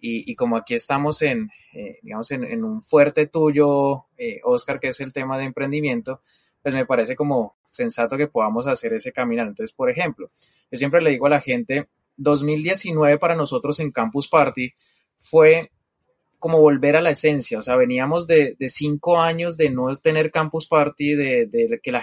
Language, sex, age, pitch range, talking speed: Spanish, male, 20-39, 135-170 Hz, 190 wpm